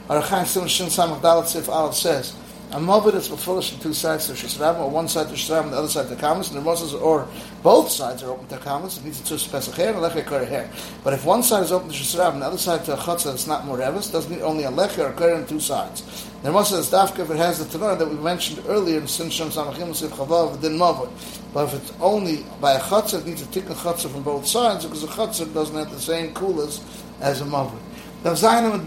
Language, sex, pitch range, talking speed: English, male, 155-190 Hz, 260 wpm